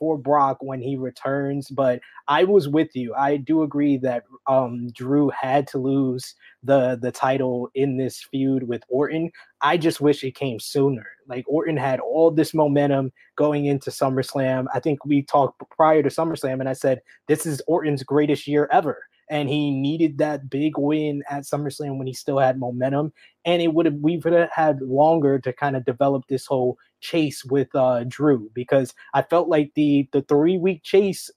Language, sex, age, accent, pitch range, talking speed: English, male, 20-39, American, 135-160 Hz, 185 wpm